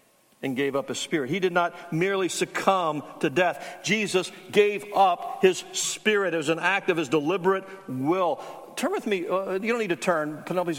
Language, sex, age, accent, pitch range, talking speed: English, male, 60-79, American, 155-195 Hz, 185 wpm